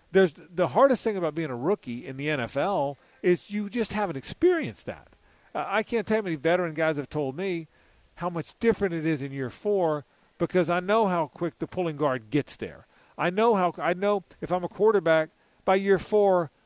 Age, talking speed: 50-69, 215 wpm